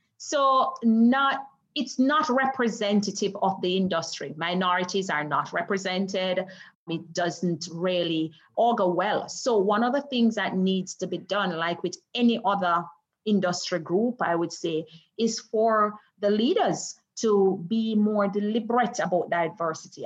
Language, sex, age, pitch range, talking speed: English, female, 30-49, 175-220 Hz, 140 wpm